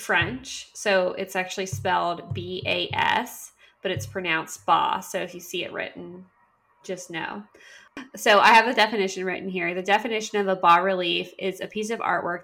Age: 20-39